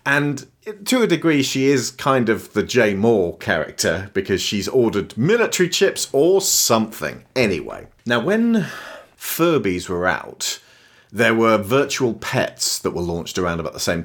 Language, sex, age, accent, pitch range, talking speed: English, male, 40-59, British, 90-125 Hz, 155 wpm